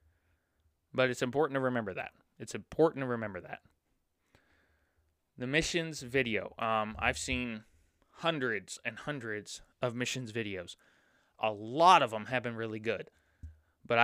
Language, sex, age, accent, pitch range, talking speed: English, male, 20-39, American, 80-135 Hz, 135 wpm